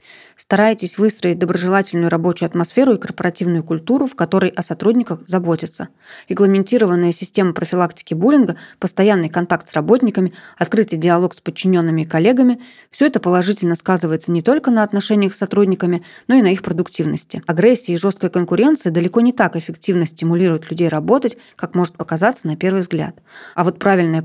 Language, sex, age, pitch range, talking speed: Russian, female, 20-39, 170-215 Hz, 155 wpm